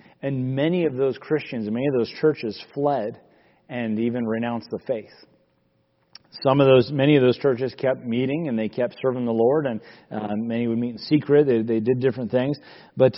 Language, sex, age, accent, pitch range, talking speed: English, male, 40-59, American, 110-130 Hz, 200 wpm